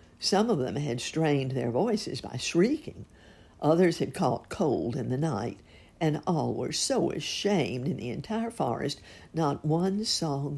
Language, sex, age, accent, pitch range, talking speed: English, female, 60-79, American, 130-185 Hz, 160 wpm